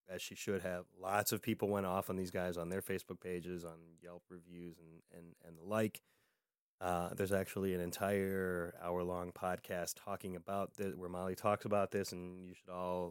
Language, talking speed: English, 200 wpm